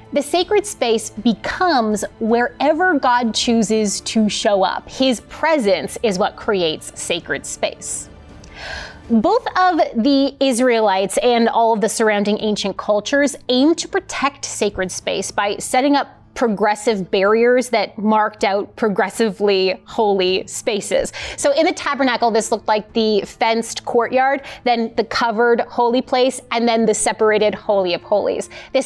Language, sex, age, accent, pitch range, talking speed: English, female, 20-39, American, 215-285 Hz, 140 wpm